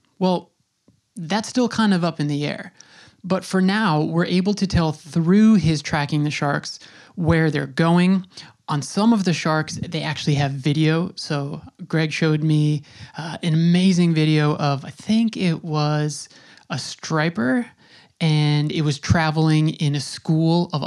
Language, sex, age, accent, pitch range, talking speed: English, male, 20-39, American, 150-180 Hz, 160 wpm